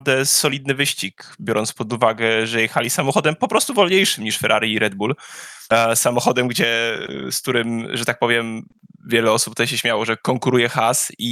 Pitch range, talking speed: 115-135 Hz, 170 wpm